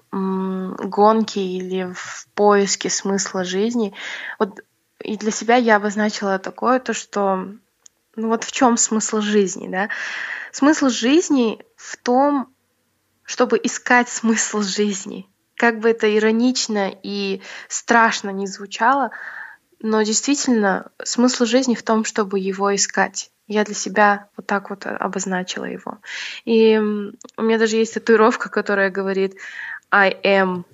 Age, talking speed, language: 20-39, 125 wpm, Russian